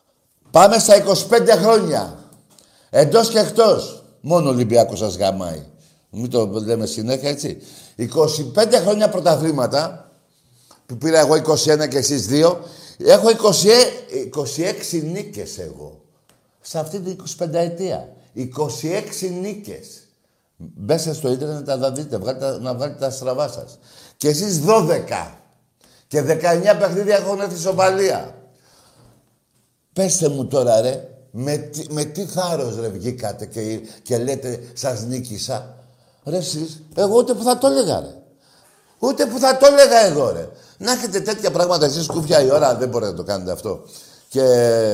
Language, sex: Greek, male